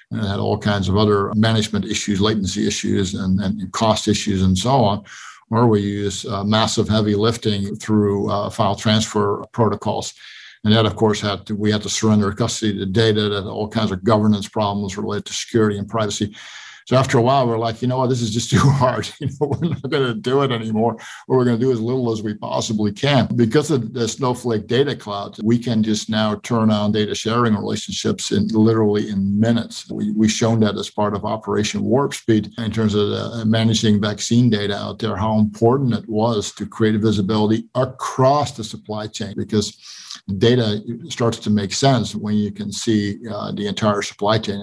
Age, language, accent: 50-69, English, American